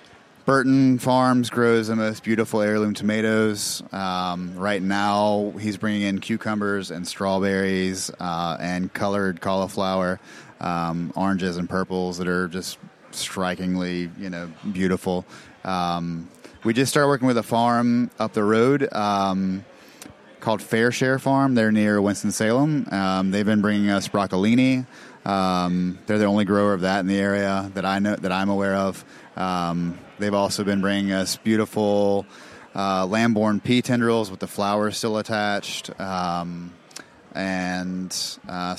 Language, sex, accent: English, male, American